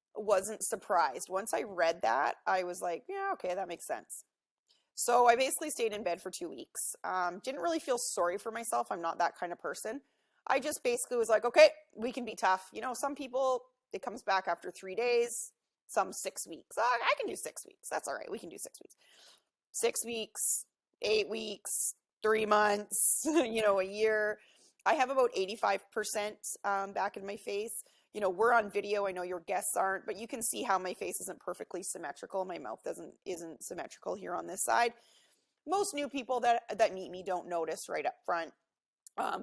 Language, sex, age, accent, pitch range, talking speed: English, female, 30-49, American, 185-245 Hz, 200 wpm